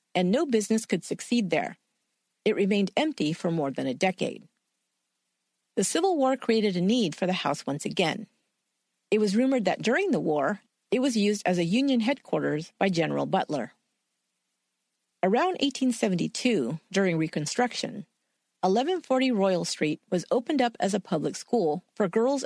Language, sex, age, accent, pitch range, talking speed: English, female, 50-69, American, 170-250 Hz, 155 wpm